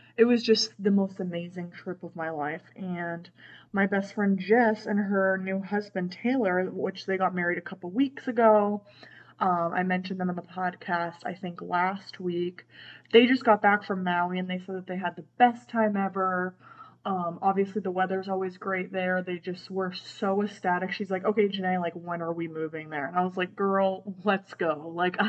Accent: American